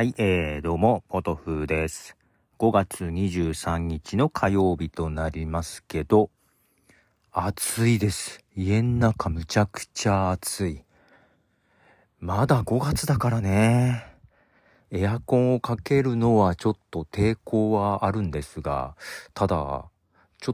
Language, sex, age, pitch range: Japanese, male, 40-59, 80-105 Hz